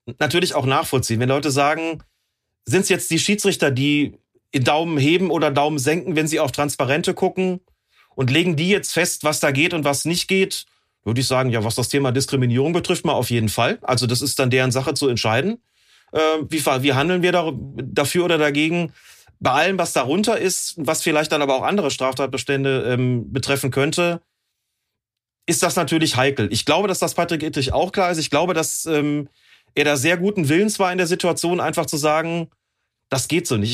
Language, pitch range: German, 135-175 Hz